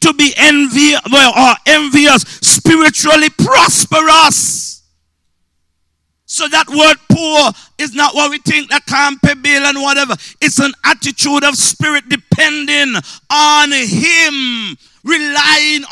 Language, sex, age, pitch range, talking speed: English, male, 50-69, 225-300 Hz, 115 wpm